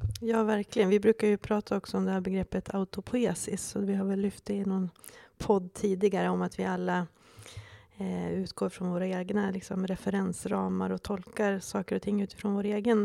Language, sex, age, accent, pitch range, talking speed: Swedish, female, 30-49, native, 180-215 Hz, 190 wpm